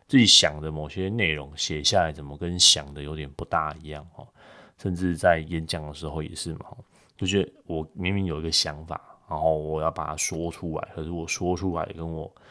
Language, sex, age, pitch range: Chinese, male, 20-39, 75-85 Hz